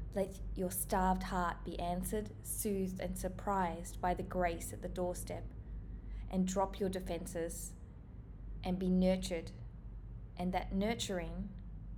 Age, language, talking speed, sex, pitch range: 20-39, English, 125 wpm, female, 160-205 Hz